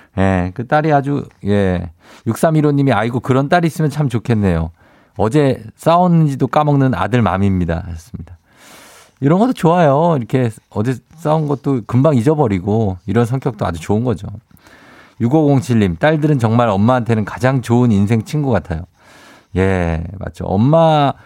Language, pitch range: Korean, 100-150 Hz